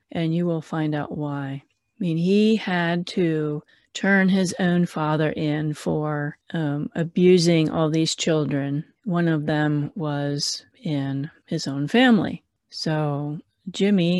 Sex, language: female, English